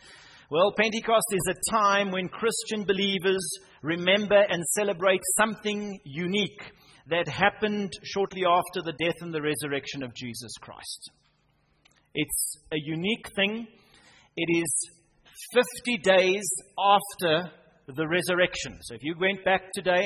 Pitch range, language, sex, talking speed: 150-195 Hz, English, male, 125 wpm